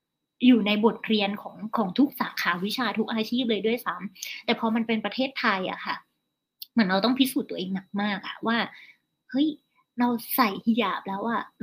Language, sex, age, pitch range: Thai, female, 20-39, 210-260 Hz